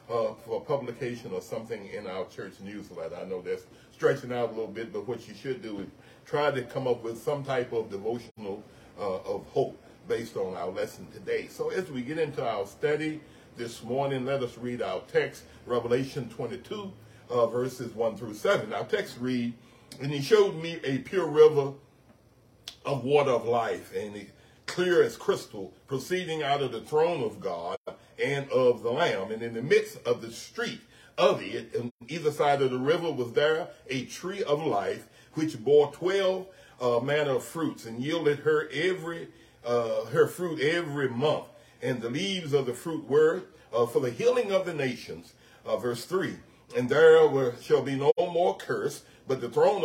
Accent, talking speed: American, 185 wpm